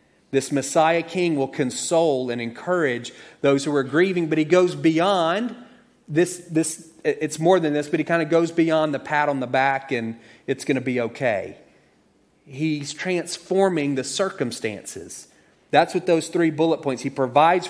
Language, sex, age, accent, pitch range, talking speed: English, male, 30-49, American, 130-165 Hz, 170 wpm